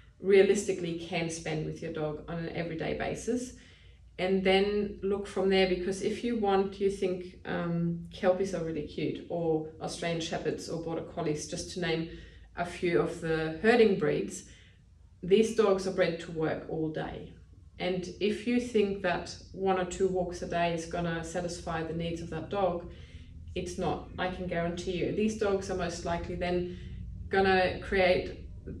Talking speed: 170 wpm